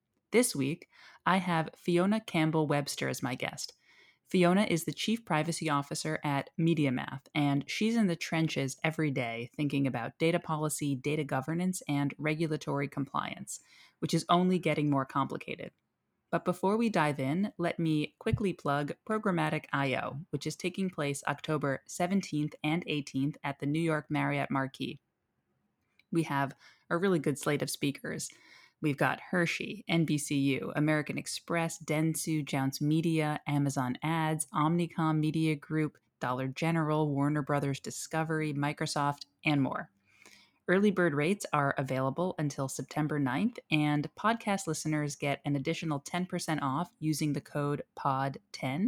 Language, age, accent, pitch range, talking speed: English, 20-39, American, 140-165 Hz, 140 wpm